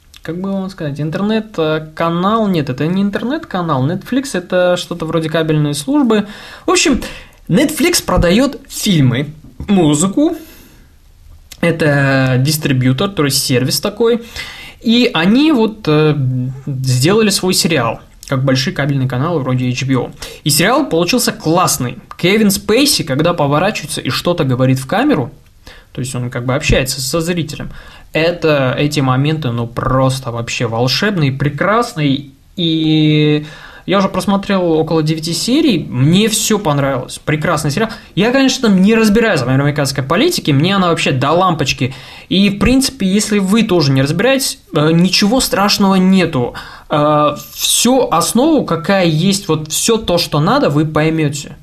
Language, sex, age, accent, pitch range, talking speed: Russian, male, 20-39, native, 145-205 Hz, 130 wpm